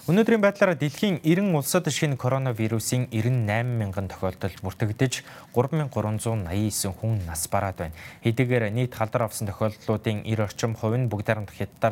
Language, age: English, 20-39